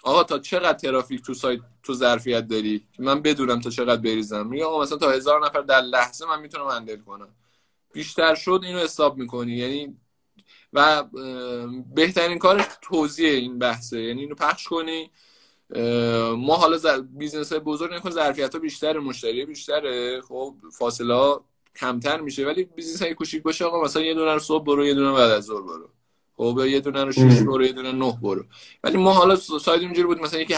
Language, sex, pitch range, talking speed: Persian, male, 130-160 Hz, 185 wpm